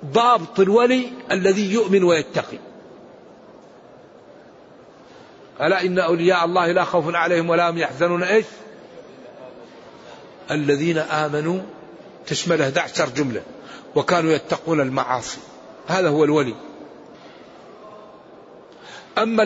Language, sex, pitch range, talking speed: Arabic, male, 190-225 Hz, 85 wpm